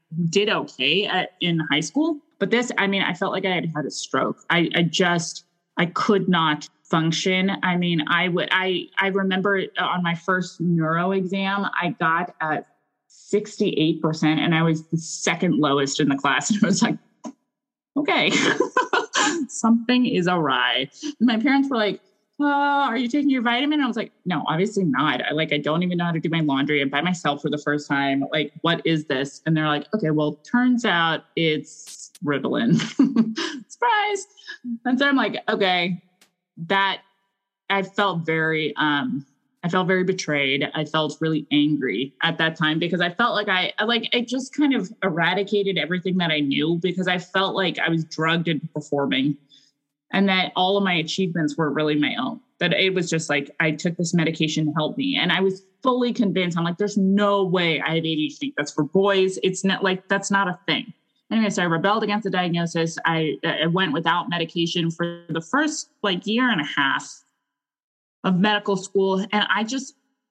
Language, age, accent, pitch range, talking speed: English, 20-39, American, 160-210 Hz, 190 wpm